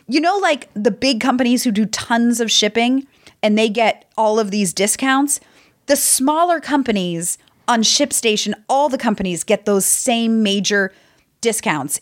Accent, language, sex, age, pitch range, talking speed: American, English, female, 30-49, 195-250 Hz, 155 wpm